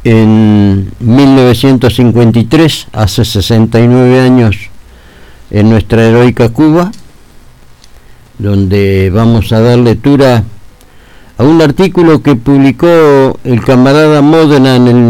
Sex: male